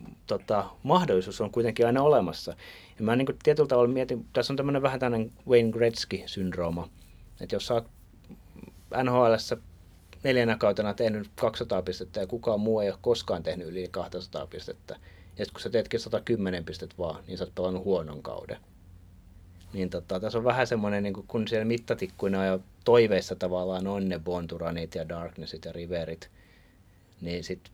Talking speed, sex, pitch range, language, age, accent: 155 wpm, male, 90-110 Hz, Finnish, 30-49, native